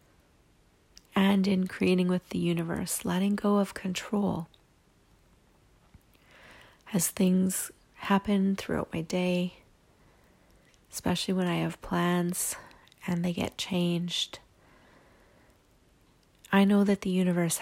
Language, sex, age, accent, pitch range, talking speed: English, female, 30-49, American, 175-200 Hz, 100 wpm